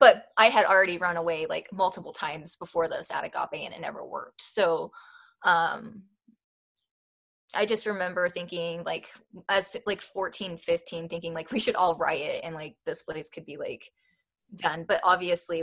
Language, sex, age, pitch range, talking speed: English, female, 20-39, 175-245 Hz, 170 wpm